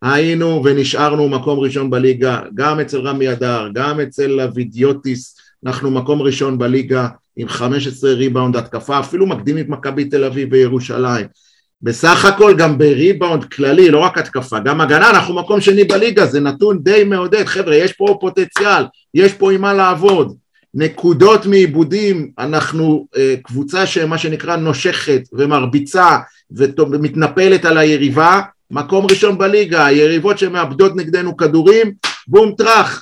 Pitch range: 140-185 Hz